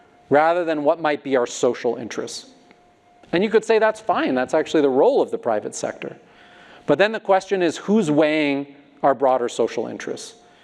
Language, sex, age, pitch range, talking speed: English, male, 40-59, 135-180 Hz, 185 wpm